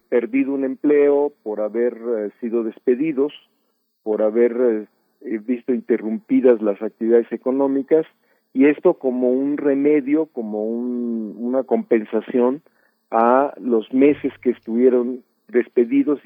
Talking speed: 105 wpm